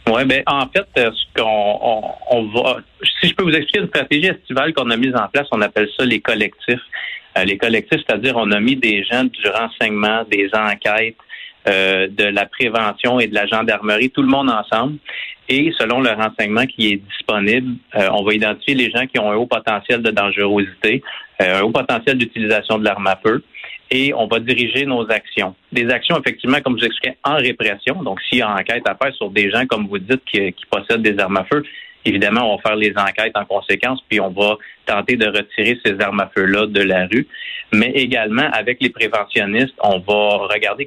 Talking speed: 215 wpm